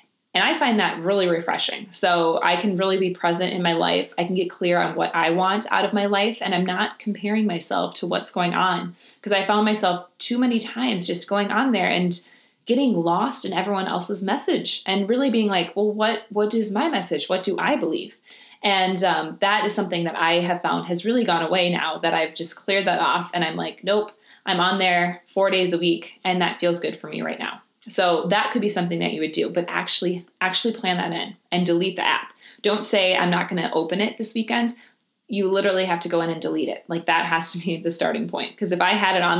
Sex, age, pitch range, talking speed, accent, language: female, 20-39, 175-210 Hz, 240 wpm, American, English